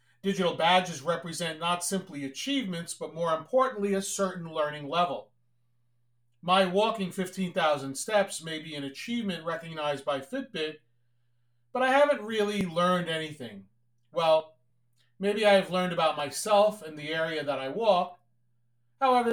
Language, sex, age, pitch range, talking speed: English, male, 40-59, 135-195 Hz, 135 wpm